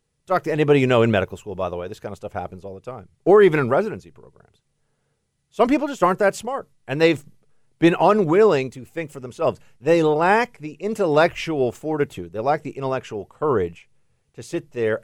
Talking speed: 205 wpm